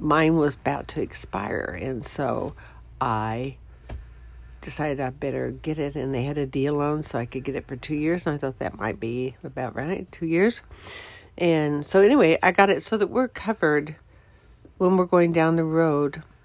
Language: English